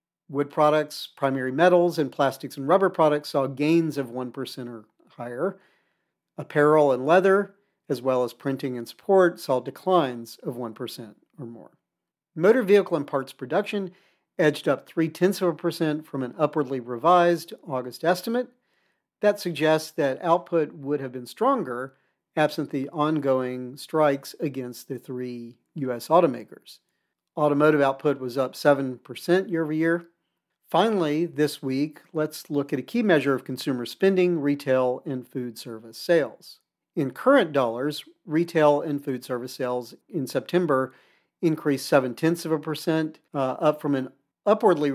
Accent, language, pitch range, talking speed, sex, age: American, English, 130-170 Hz, 150 wpm, male, 50-69